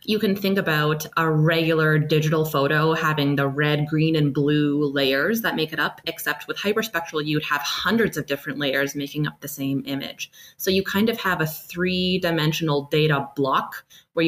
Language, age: English, 20-39